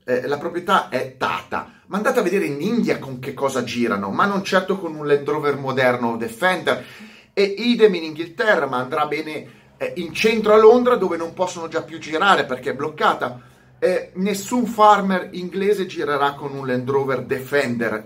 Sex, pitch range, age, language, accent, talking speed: male, 130-200 Hz, 30-49, Italian, native, 185 wpm